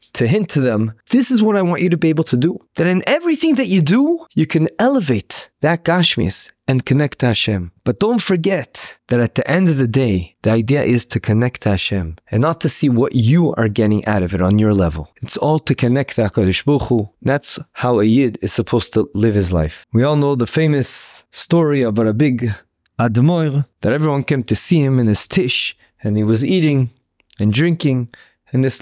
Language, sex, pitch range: English, male, 110-165 Hz